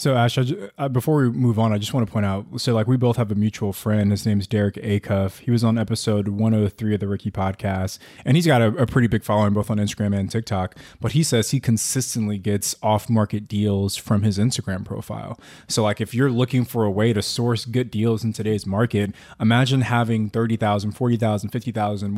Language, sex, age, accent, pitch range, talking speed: English, male, 20-39, American, 105-125 Hz, 215 wpm